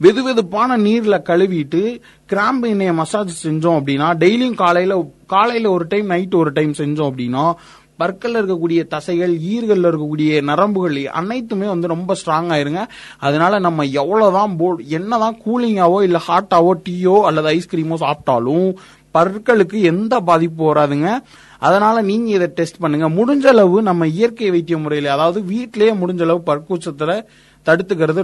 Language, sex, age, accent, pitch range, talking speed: Tamil, male, 30-49, native, 155-205 Hz, 130 wpm